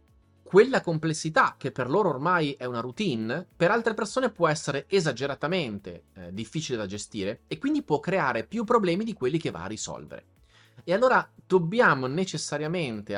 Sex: male